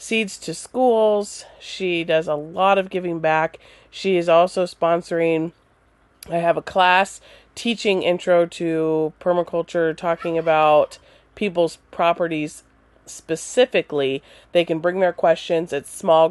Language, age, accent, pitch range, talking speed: English, 30-49, American, 155-180 Hz, 125 wpm